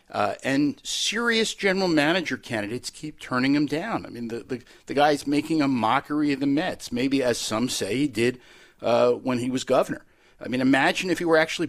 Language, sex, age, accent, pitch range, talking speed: English, male, 50-69, American, 120-160 Hz, 205 wpm